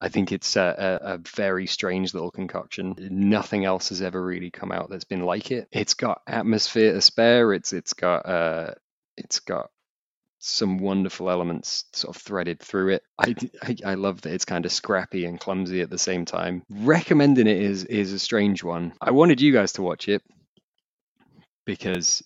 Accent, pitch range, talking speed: British, 90-105 Hz, 190 wpm